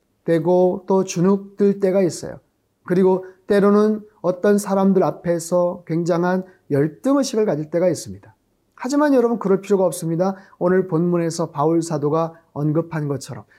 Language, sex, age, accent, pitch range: Korean, male, 30-49, native, 150-190 Hz